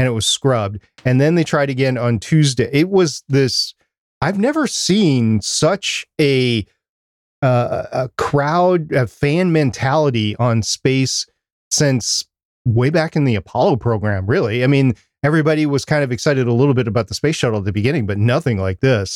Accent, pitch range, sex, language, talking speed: American, 120-160 Hz, male, English, 175 wpm